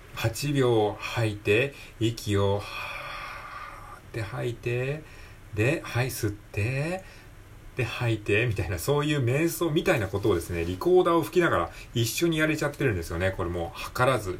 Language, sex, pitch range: Japanese, male, 95-125 Hz